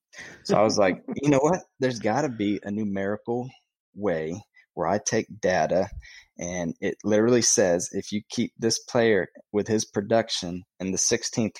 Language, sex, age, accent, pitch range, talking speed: English, male, 20-39, American, 90-110 Hz, 170 wpm